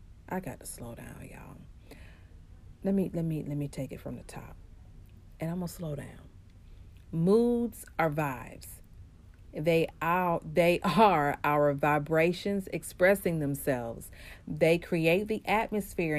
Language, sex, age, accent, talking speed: English, female, 40-59, American, 135 wpm